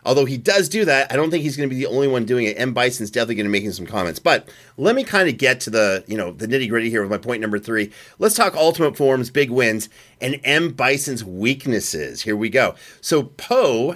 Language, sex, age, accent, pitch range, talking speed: English, male, 40-59, American, 115-155 Hz, 255 wpm